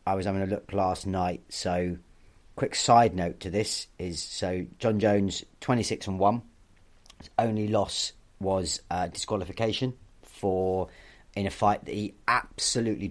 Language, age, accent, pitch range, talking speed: English, 30-49, British, 95-115 Hz, 150 wpm